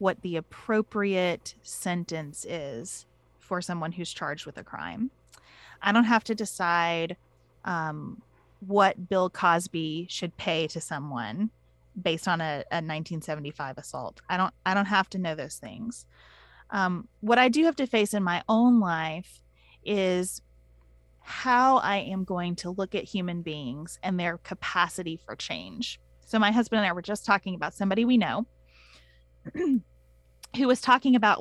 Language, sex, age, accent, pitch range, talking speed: English, female, 30-49, American, 160-225 Hz, 155 wpm